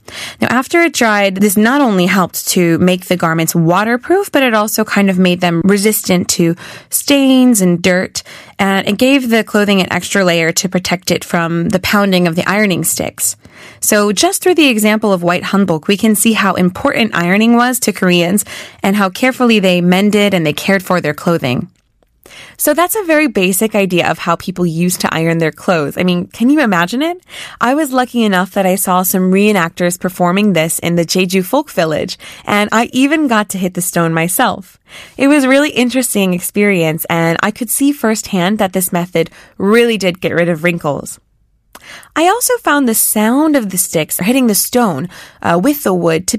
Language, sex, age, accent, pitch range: Korean, female, 20-39, American, 175-235 Hz